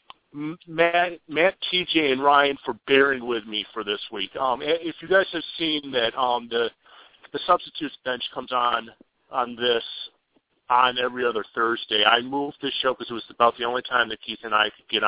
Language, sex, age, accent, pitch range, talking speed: English, male, 50-69, American, 120-170 Hz, 195 wpm